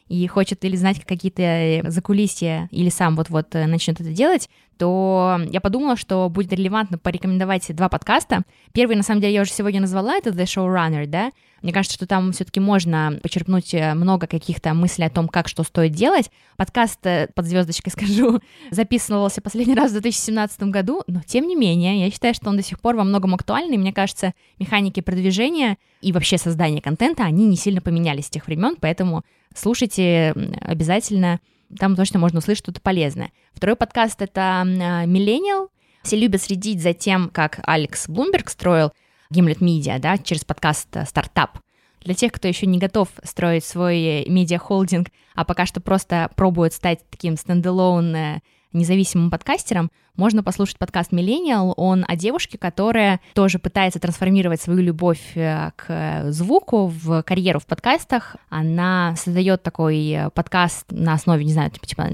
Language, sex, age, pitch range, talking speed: Russian, female, 20-39, 170-200 Hz, 155 wpm